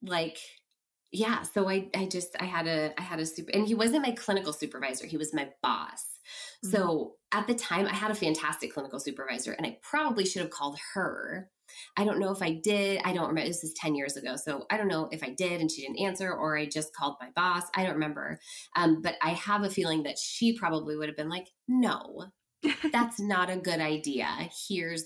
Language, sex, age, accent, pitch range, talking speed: English, female, 20-39, American, 160-210 Hz, 225 wpm